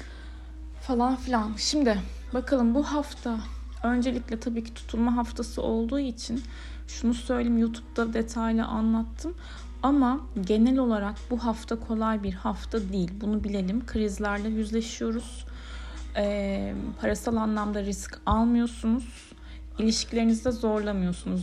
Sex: female